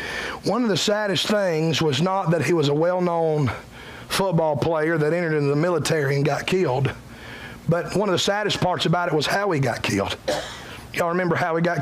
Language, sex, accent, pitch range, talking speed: English, male, American, 155-195 Hz, 205 wpm